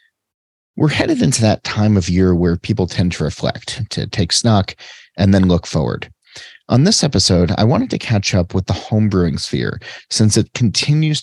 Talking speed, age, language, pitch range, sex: 185 wpm, 30-49, English, 90-105 Hz, male